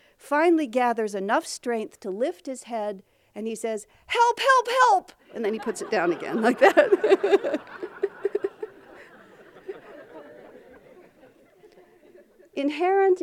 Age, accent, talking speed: 60-79, American, 110 wpm